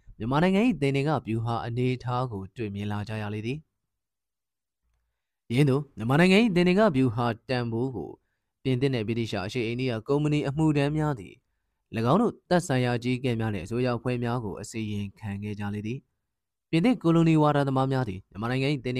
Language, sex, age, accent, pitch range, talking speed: English, male, 20-39, Indian, 110-140 Hz, 60 wpm